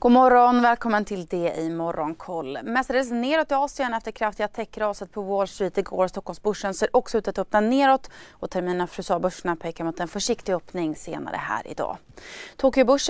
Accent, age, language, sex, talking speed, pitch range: native, 30-49, Swedish, female, 180 wpm, 180-225 Hz